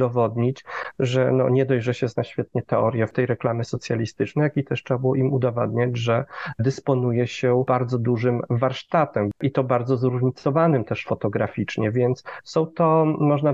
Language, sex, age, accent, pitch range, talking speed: Polish, male, 40-59, native, 125-150 Hz, 160 wpm